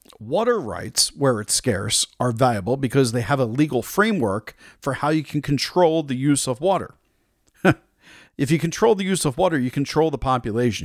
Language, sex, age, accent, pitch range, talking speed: English, male, 40-59, American, 120-155 Hz, 185 wpm